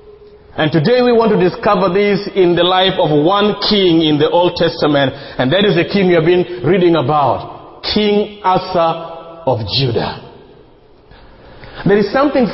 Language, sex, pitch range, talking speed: English, male, 155-225 Hz, 165 wpm